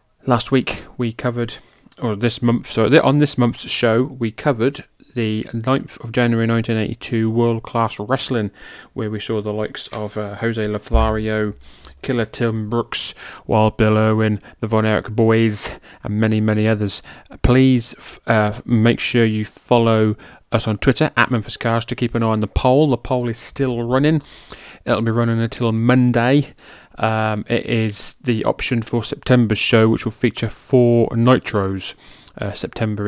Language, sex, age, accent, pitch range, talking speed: English, male, 20-39, British, 110-120 Hz, 160 wpm